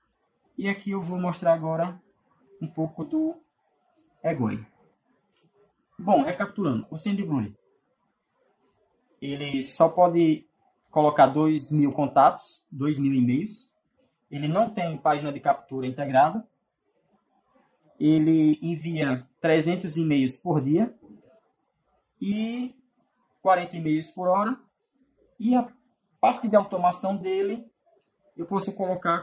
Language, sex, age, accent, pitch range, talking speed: Portuguese, male, 20-39, Brazilian, 155-210 Hz, 105 wpm